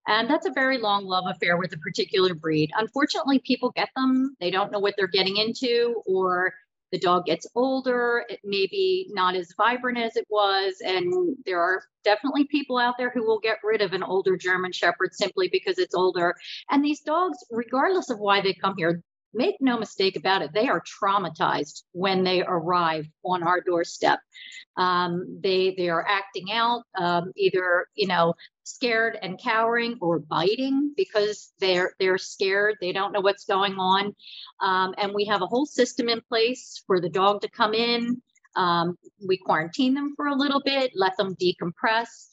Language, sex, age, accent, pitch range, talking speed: English, female, 40-59, American, 185-245 Hz, 185 wpm